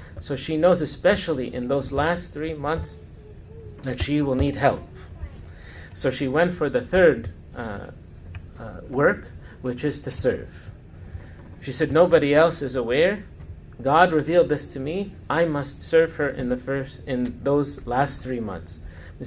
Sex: male